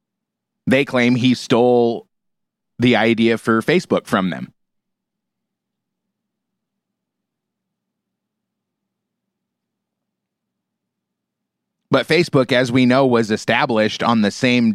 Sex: male